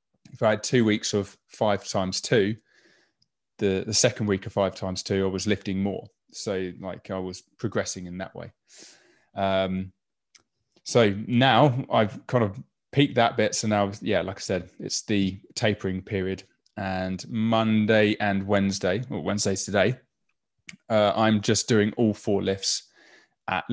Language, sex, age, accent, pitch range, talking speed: English, male, 20-39, British, 95-110 Hz, 160 wpm